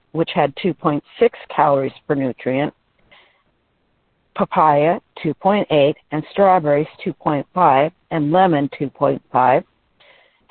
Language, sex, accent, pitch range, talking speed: English, female, American, 150-190 Hz, 80 wpm